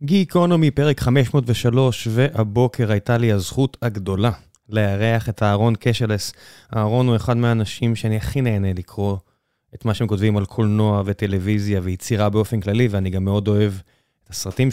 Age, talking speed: 20-39, 145 wpm